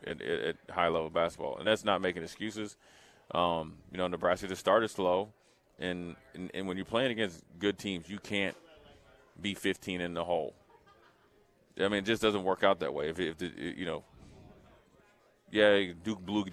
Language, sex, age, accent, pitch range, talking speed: English, male, 30-49, American, 90-100 Hz, 190 wpm